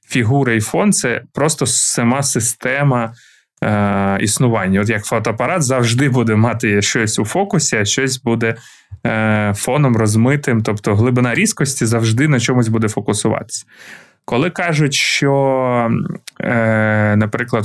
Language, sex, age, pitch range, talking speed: Ukrainian, male, 20-39, 110-135 Hz, 125 wpm